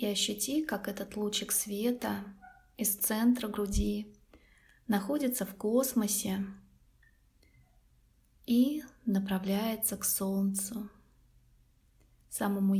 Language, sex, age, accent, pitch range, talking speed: Russian, female, 20-39, native, 195-230 Hz, 80 wpm